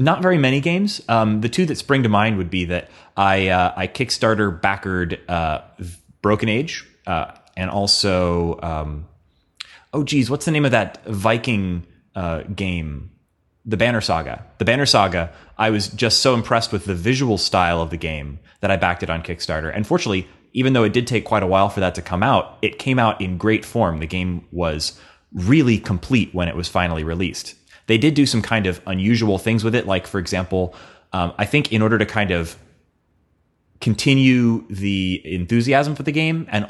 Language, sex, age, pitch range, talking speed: English, male, 30-49, 90-115 Hz, 190 wpm